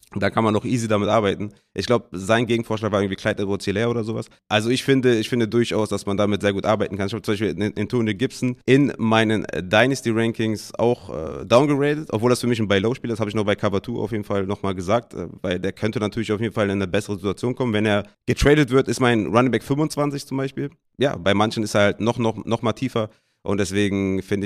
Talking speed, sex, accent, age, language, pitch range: 250 wpm, male, German, 30-49, German, 100-120 Hz